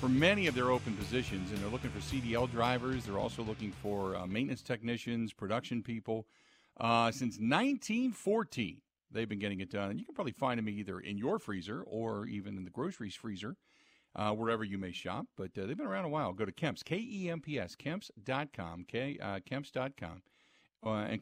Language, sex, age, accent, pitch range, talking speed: English, male, 50-69, American, 105-145 Hz, 185 wpm